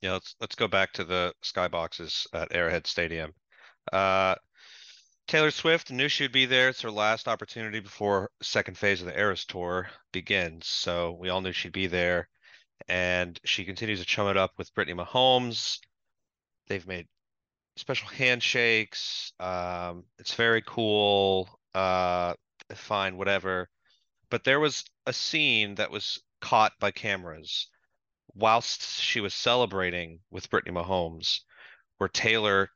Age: 30-49